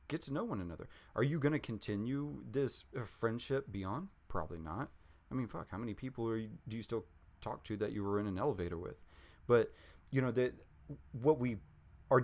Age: 30-49